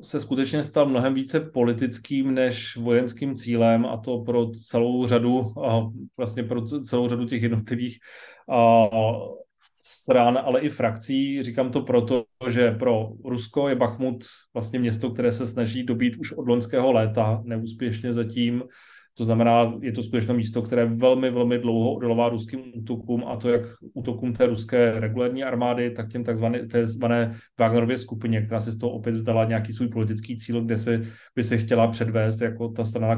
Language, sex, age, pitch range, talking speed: Slovak, male, 30-49, 115-125 Hz, 165 wpm